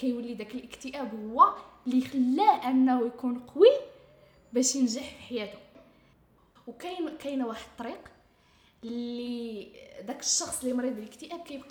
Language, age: English, 10-29